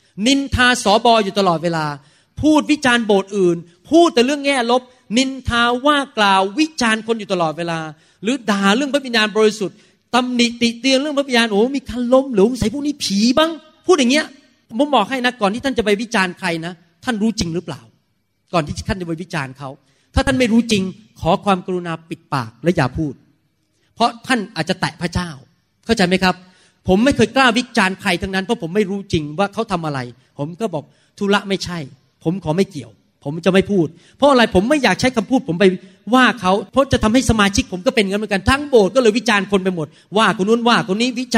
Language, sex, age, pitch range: Thai, male, 30-49, 175-245 Hz